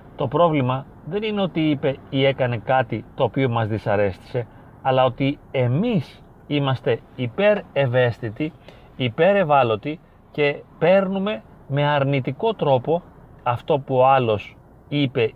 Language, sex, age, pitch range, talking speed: Greek, male, 40-59, 120-150 Hz, 115 wpm